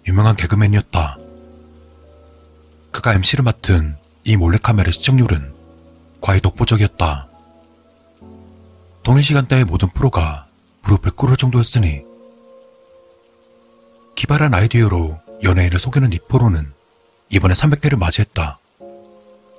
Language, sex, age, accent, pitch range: Korean, male, 40-59, native, 80-125 Hz